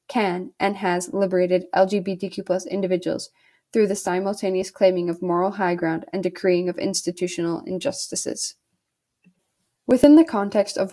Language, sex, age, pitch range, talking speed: English, female, 10-29, 180-205 Hz, 125 wpm